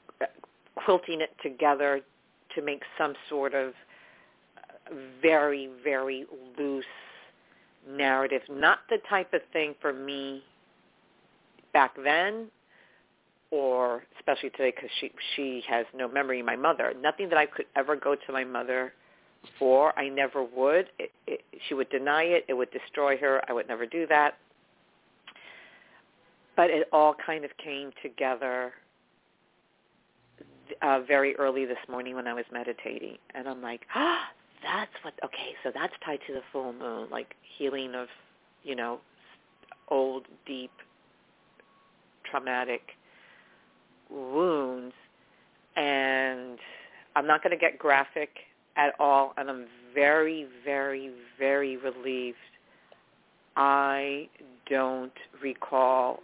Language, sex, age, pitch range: English, female, 50-69, 130-145 Hz